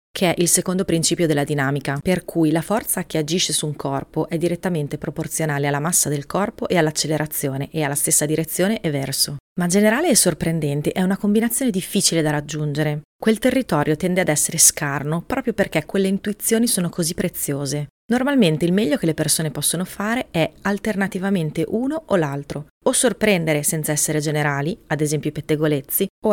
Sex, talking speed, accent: female, 175 wpm, native